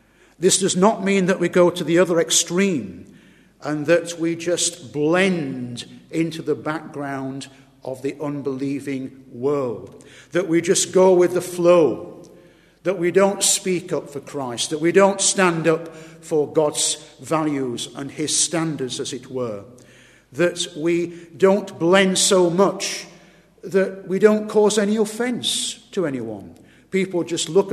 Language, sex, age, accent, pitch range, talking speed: English, male, 50-69, British, 155-195 Hz, 145 wpm